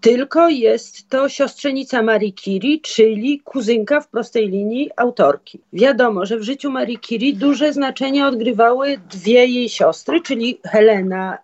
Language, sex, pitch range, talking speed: Polish, female, 210-280 Hz, 135 wpm